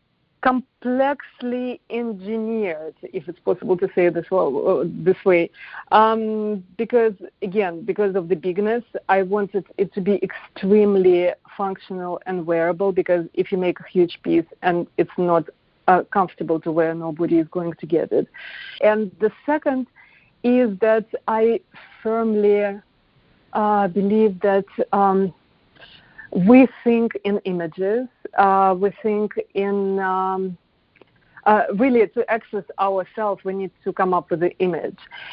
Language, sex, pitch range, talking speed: English, female, 185-220 Hz, 135 wpm